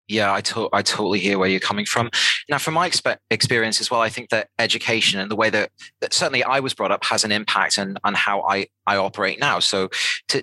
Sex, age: male, 30-49